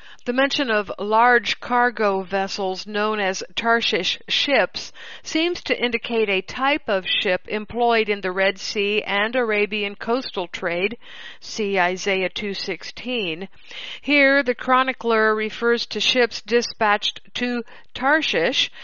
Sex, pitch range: female, 195-240 Hz